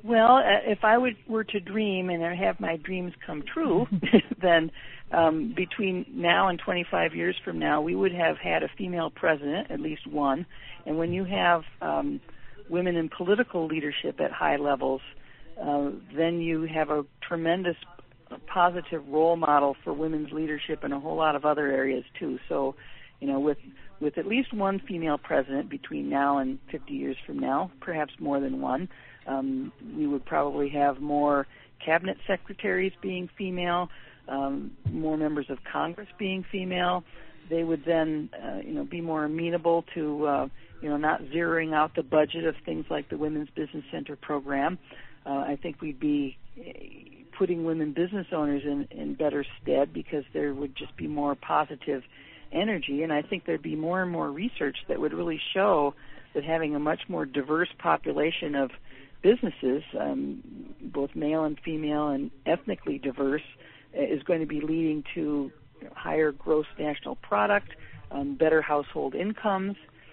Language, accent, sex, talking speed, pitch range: English, American, female, 165 wpm, 145-175 Hz